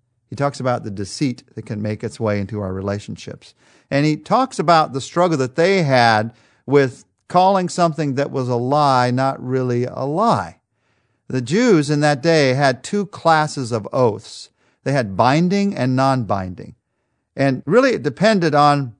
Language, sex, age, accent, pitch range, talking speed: English, male, 50-69, American, 120-160 Hz, 165 wpm